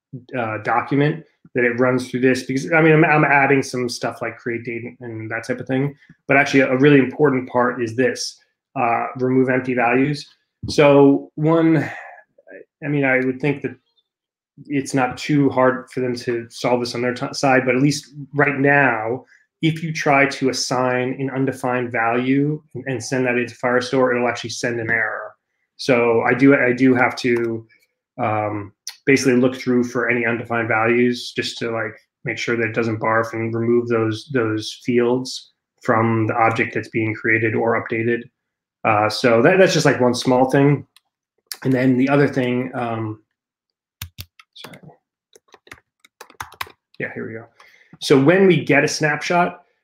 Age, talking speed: 20-39, 170 wpm